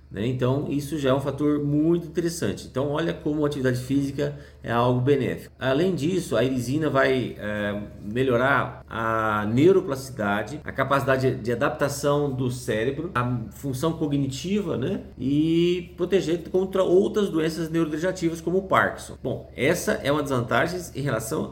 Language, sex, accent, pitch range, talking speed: Portuguese, male, Brazilian, 115-160 Hz, 150 wpm